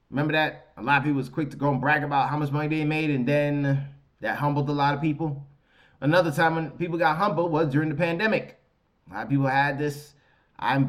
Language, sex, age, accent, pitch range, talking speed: English, male, 30-49, American, 130-185 Hz, 235 wpm